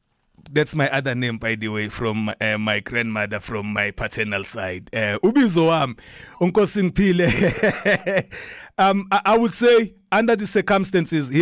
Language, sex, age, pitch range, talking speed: English, male, 30-49, 135-175 Hz, 130 wpm